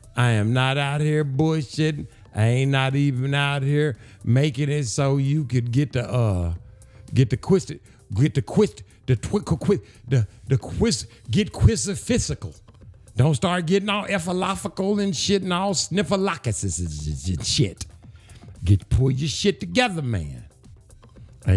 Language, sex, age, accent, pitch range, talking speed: English, male, 60-79, American, 105-145 Hz, 150 wpm